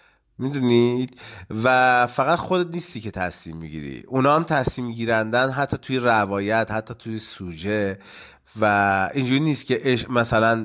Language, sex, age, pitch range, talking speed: Persian, male, 30-49, 110-145 Hz, 130 wpm